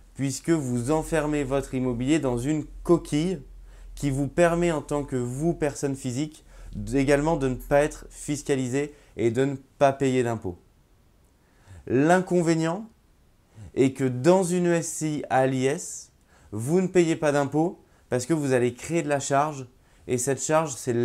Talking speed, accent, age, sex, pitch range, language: 155 wpm, French, 20-39, male, 125-155 Hz, French